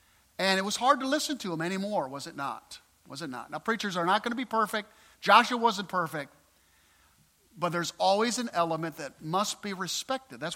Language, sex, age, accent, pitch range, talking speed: English, male, 50-69, American, 185-245 Hz, 205 wpm